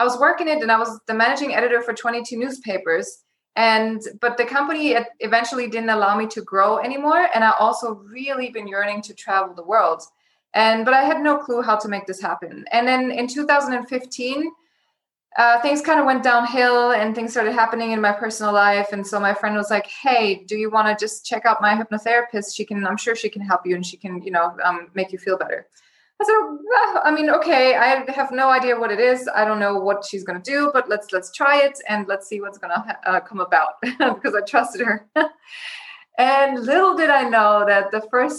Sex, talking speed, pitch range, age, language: female, 220 wpm, 205-250 Hz, 20-39, English